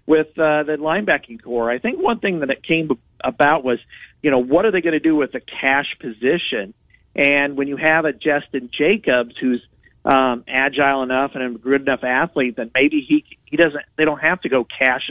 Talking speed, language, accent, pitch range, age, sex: 210 wpm, English, American, 120-145 Hz, 50-69, male